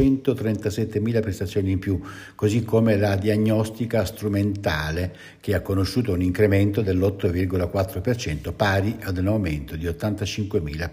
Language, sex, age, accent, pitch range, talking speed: Italian, male, 60-79, native, 95-120 Hz, 110 wpm